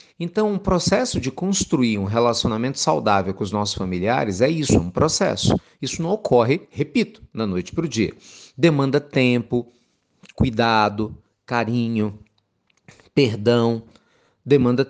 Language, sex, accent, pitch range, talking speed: Portuguese, male, Brazilian, 110-155 Hz, 125 wpm